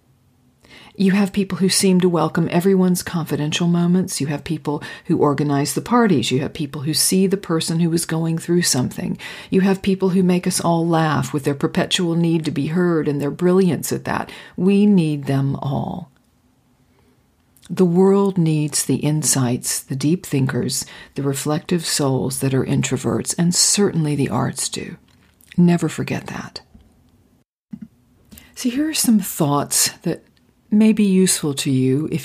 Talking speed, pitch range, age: 160 wpm, 135-180 Hz, 50-69